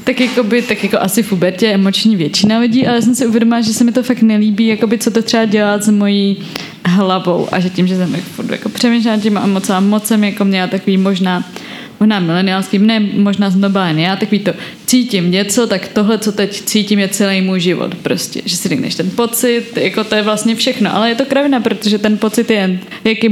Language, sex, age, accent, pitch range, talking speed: Czech, female, 20-39, native, 195-230 Hz, 220 wpm